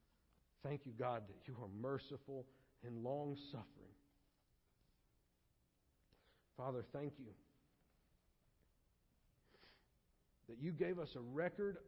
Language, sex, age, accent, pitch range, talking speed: English, male, 50-69, American, 95-150 Hz, 90 wpm